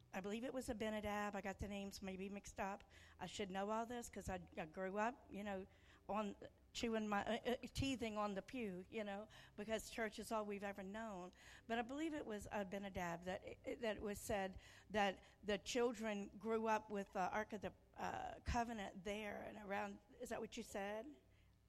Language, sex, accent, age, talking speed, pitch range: English, female, American, 50-69, 210 wpm, 200-230 Hz